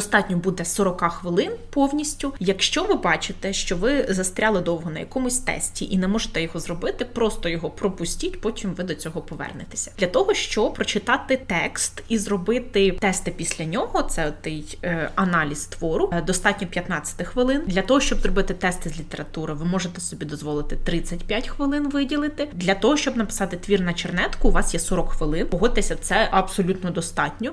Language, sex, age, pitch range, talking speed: Ukrainian, female, 20-39, 170-215 Hz, 165 wpm